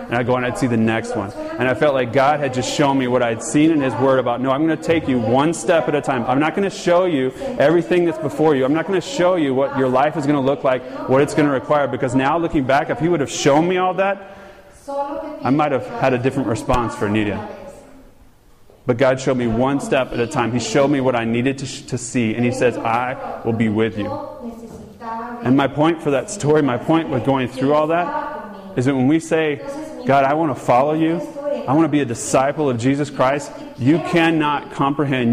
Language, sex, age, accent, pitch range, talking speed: English, male, 30-49, American, 130-165 Hz, 250 wpm